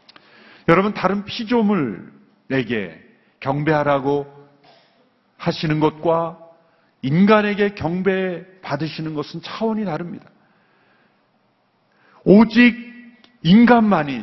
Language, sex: Korean, male